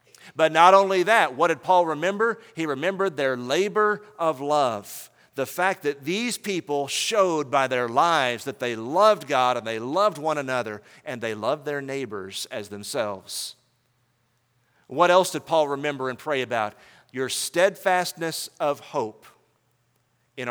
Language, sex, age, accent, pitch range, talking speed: English, male, 50-69, American, 125-180 Hz, 150 wpm